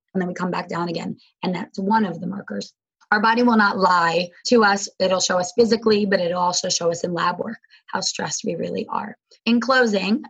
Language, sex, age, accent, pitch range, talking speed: English, female, 20-39, American, 190-225 Hz, 225 wpm